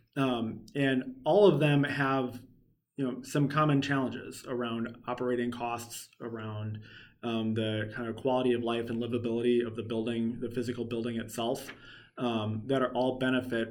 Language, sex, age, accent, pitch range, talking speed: English, male, 20-39, American, 115-130 Hz, 160 wpm